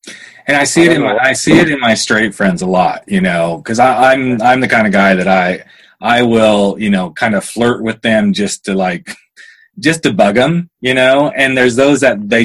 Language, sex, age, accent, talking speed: English, male, 30-49, American, 235 wpm